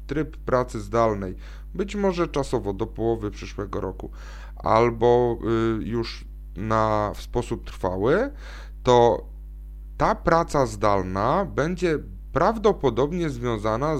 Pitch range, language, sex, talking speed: 105-155 Hz, Polish, male, 100 wpm